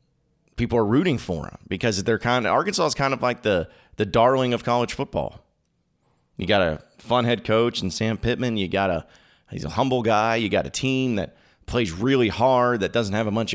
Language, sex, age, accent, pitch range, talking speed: English, male, 30-49, American, 95-120 Hz, 215 wpm